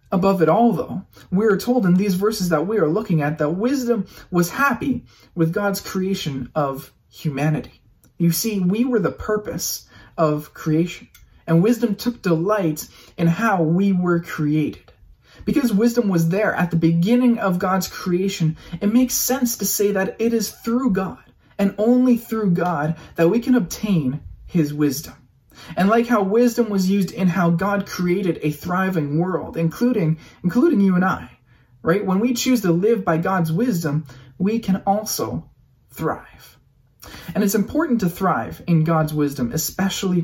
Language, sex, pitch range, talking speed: English, male, 160-215 Hz, 165 wpm